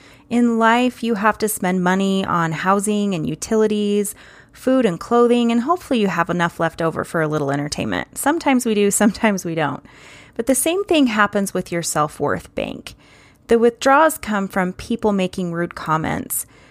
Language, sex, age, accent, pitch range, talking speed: English, female, 30-49, American, 180-230 Hz, 170 wpm